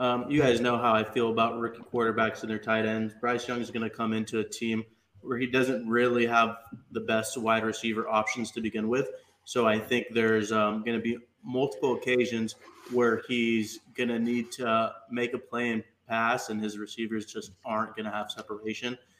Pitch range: 110-125 Hz